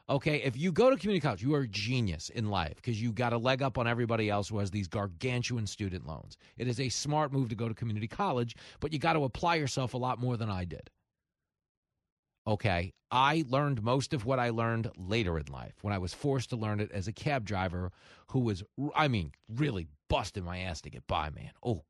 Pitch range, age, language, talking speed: 100-130 Hz, 40-59, English, 235 wpm